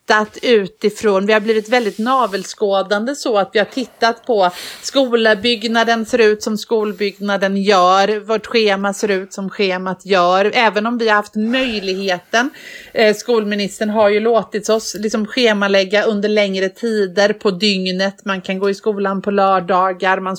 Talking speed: 155 wpm